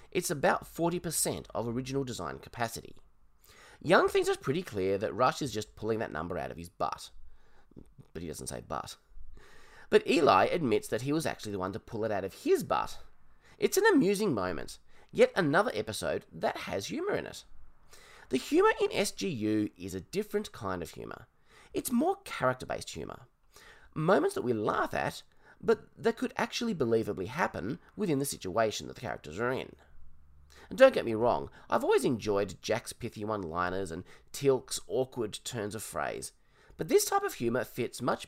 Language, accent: English, Australian